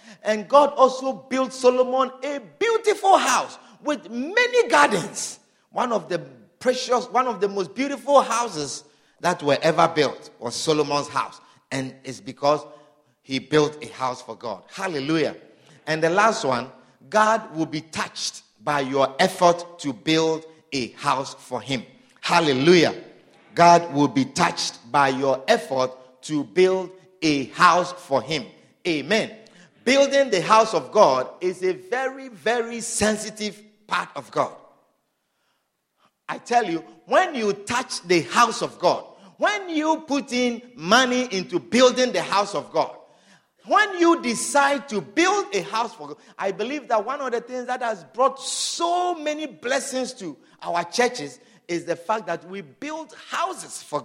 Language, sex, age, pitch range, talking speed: English, male, 50-69, 160-260 Hz, 150 wpm